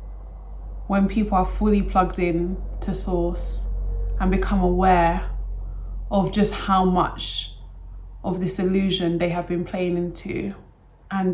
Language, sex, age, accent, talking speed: English, female, 20-39, British, 125 wpm